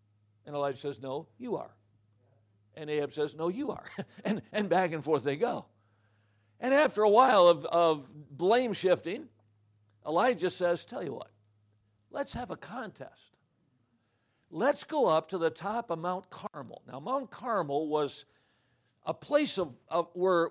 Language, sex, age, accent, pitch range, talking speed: English, male, 60-79, American, 150-210 Hz, 160 wpm